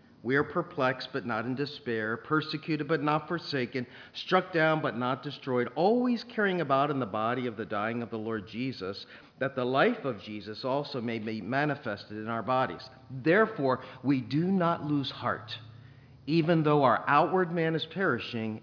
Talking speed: 175 wpm